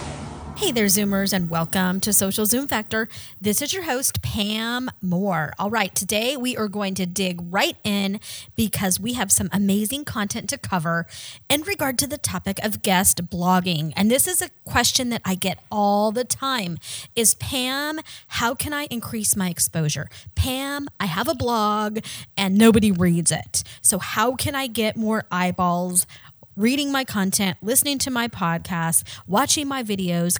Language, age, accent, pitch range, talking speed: English, 30-49, American, 180-255 Hz, 170 wpm